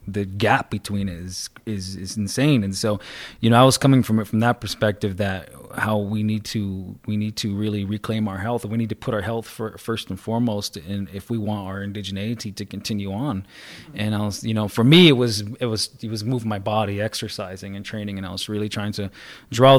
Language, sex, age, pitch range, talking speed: English, male, 20-39, 100-120 Hz, 235 wpm